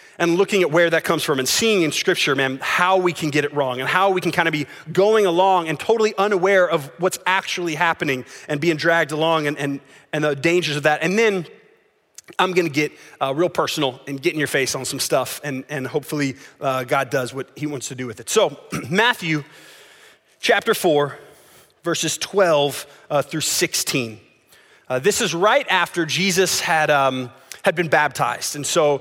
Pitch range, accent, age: 145-185 Hz, American, 30-49